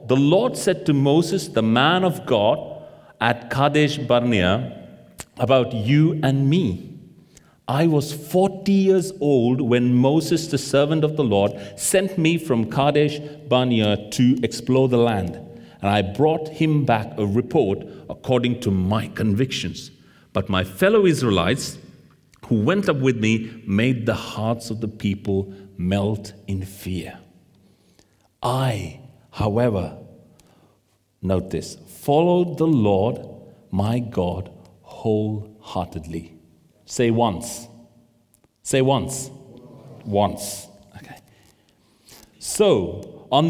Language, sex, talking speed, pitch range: English, male, 115 wpm, 105-145 Hz